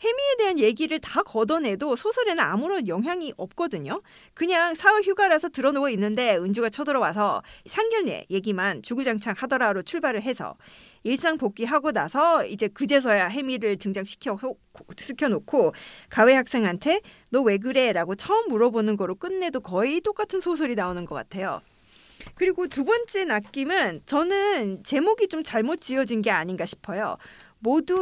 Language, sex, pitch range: Korean, female, 220-345 Hz